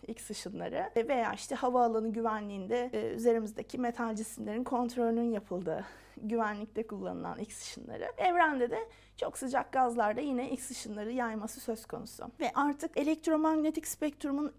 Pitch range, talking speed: 230-295 Hz, 130 wpm